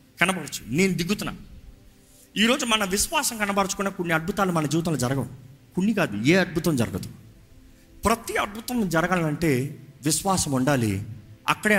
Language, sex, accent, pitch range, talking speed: Telugu, male, native, 125-205 Hz, 115 wpm